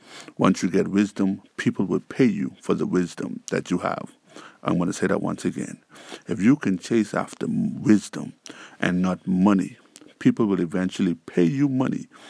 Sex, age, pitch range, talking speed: male, 50-69, 90-100 Hz, 175 wpm